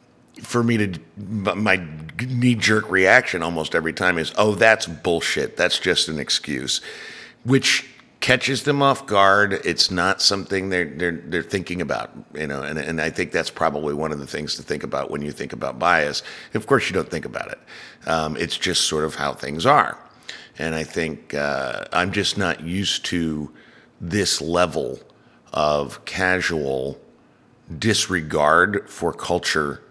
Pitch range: 75-105 Hz